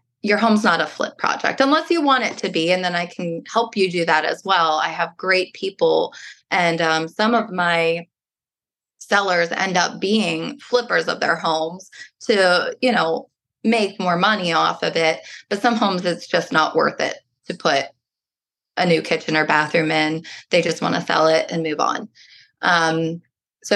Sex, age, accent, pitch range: female, 20-39, American, 165-205 Hz